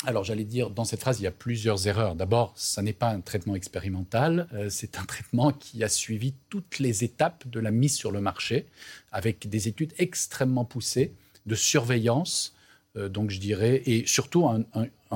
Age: 40-59